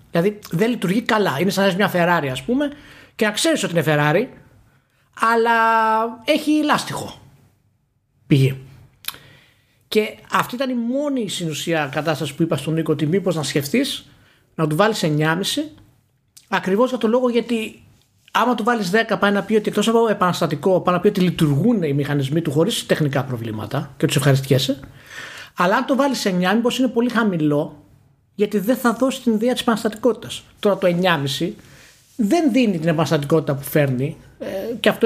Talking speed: 170 wpm